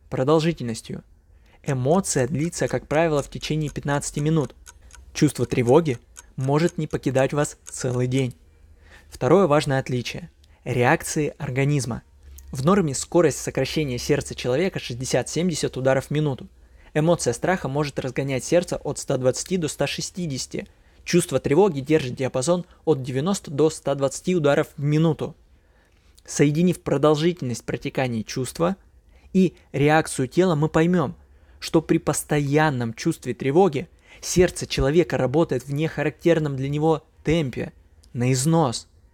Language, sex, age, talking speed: Russian, male, 20-39, 120 wpm